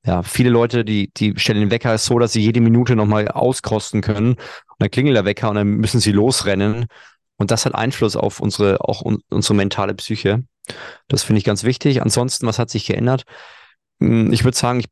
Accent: German